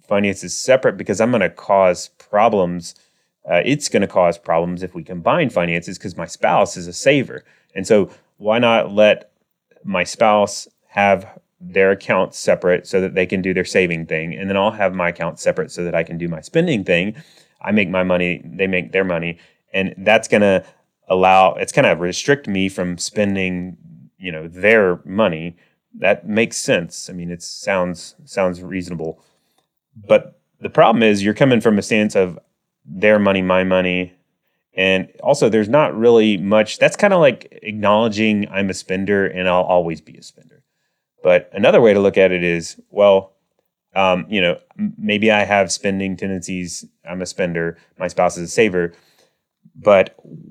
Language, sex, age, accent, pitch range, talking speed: English, male, 30-49, American, 90-105 Hz, 180 wpm